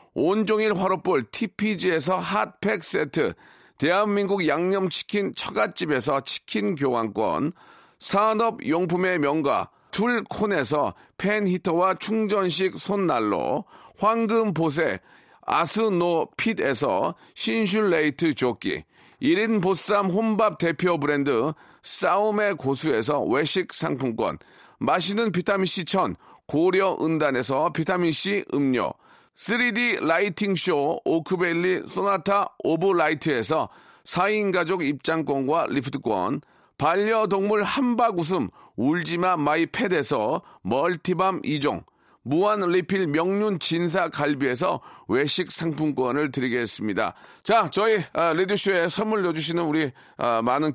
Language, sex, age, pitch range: Korean, male, 40-59, 160-205 Hz